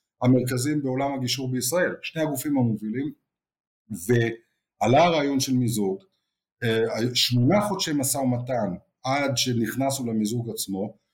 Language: Hebrew